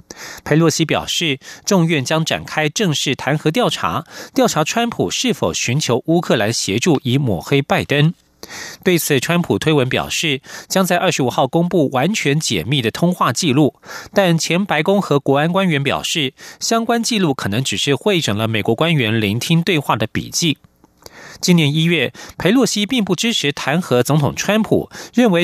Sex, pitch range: male, 140-185 Hz